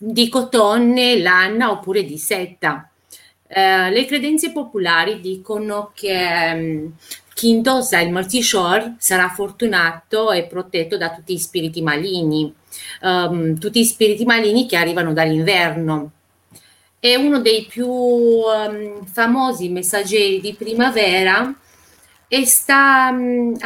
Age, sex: 30-49, female